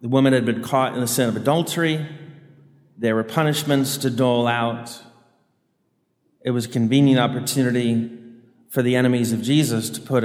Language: English